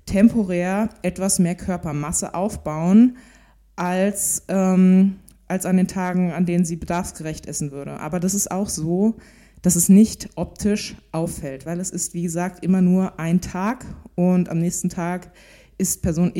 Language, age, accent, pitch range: German, 20-39, German, 175-200 Hz